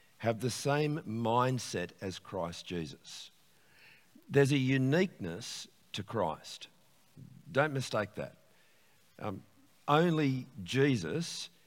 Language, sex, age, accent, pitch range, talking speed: English, male, 50-69, Australian, 105-140 Hz, 95 wpm